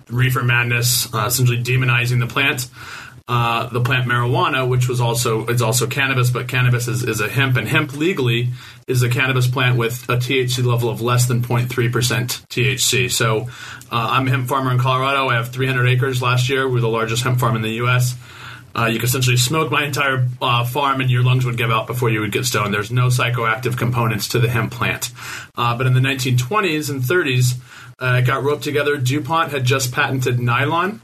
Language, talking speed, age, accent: English, 205 wpm, 30-49, American